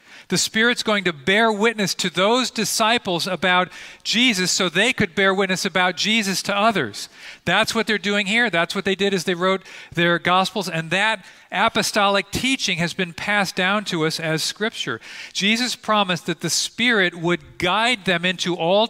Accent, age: American, 40-59